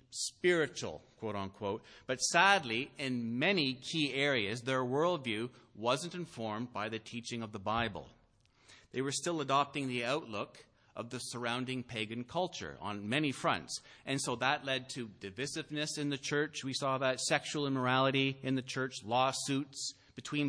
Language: English